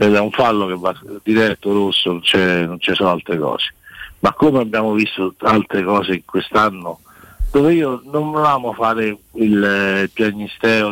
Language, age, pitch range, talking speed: Italian, 60-79, 100-120 Hz, 170 wpm